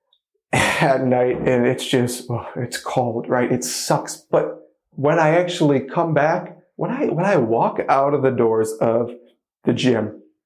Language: English